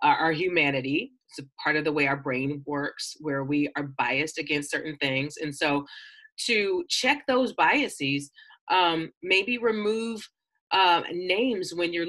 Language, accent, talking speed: English, American, 155 wpm